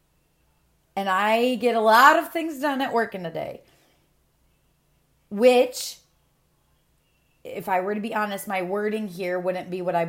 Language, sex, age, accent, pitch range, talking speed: English, female, 30-49, American, 175-225 Hz, 160 wpm